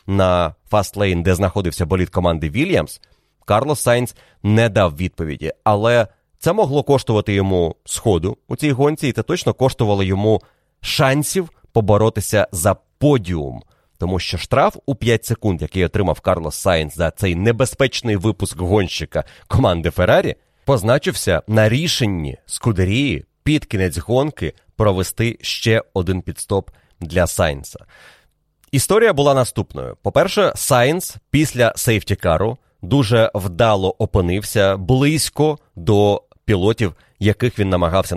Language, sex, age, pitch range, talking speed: Ukrainian, male, 30-49, 90-125 Hz, 120 wpm